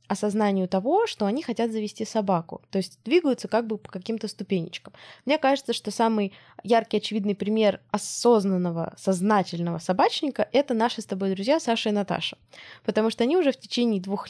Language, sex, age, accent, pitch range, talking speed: Russian, female, 20-39, native, 195-240 Hz, 170 wpm